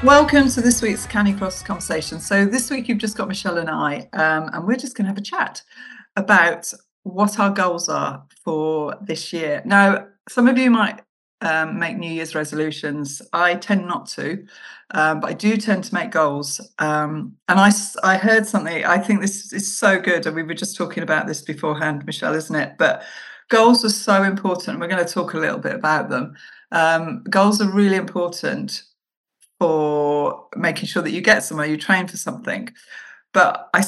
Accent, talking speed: British, 195 wpm